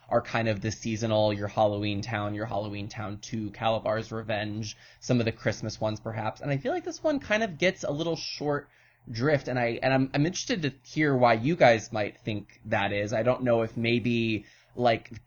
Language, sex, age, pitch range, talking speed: English, male, 20-39, 110-130 Hz, 215 wpm